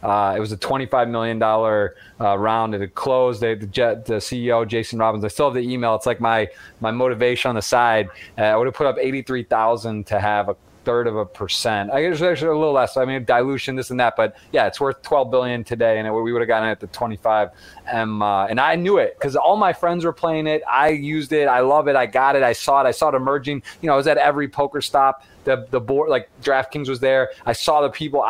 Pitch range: 115-140 Hz